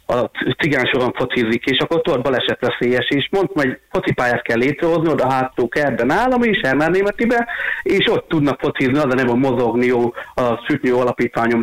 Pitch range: 125-155 Hz